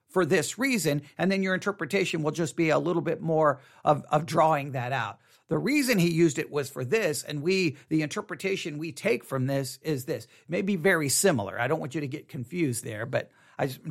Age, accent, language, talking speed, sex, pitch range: 50-69, American, English, 215 wpm, male, 130-175 Hz